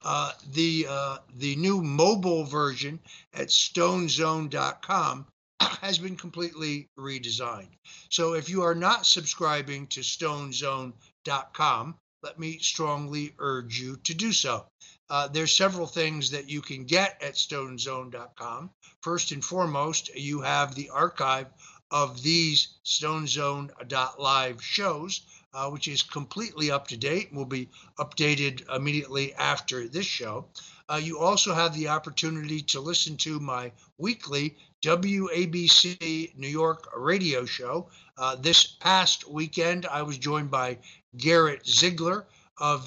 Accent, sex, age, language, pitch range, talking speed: American, male, 60-79, English, 140-170 Hz, 130 wpm